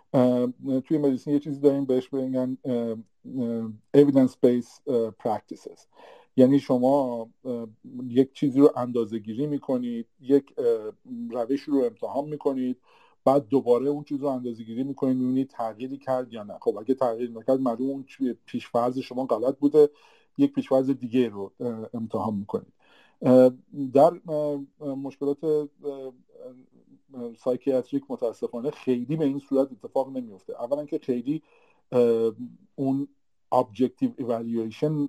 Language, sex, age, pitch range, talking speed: Persian, male, 50-69, 120-145 Hz, 120 wpm